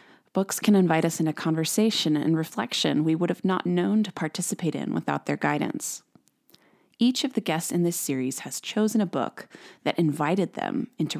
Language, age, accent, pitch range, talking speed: English, 20-39, American, 150-190 Hz, 180 wpm